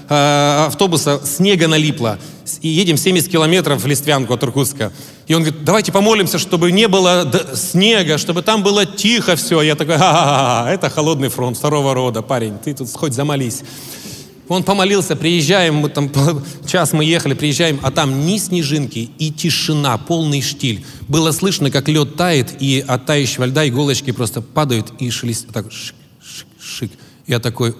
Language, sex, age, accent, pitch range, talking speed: Russian, male, 20-39, native, 125-165 Hz, 160 wpm